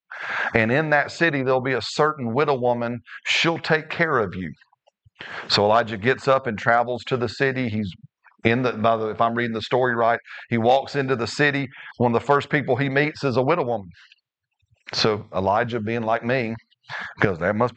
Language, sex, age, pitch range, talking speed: English, male, 40-59, 110-140 Hz, 205 wpm